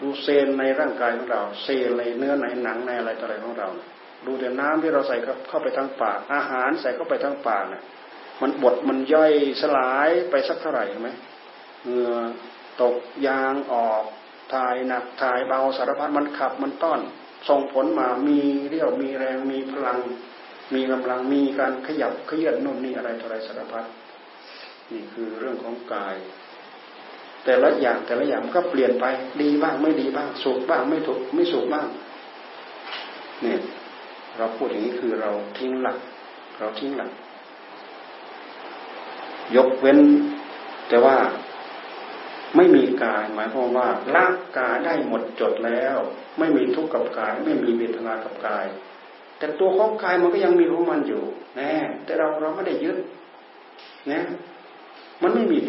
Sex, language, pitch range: male, Thai, 125-160 Hz